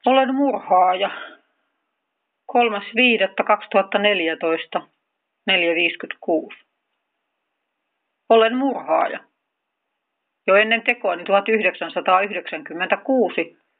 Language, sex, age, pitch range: Finnish, female, 40-59, 175-225 Hz